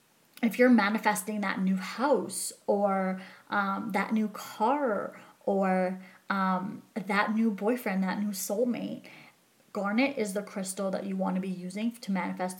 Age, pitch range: 20-39, 195-225 Hz